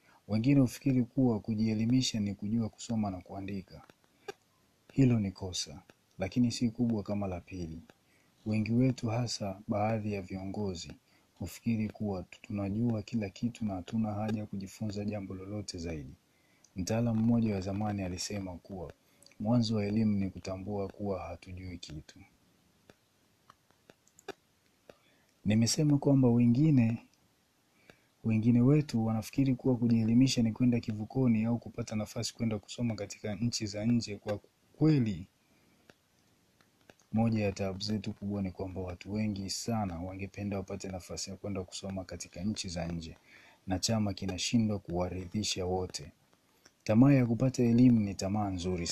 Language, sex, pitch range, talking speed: Swahili, male, 95-115 Hz, 130 wpm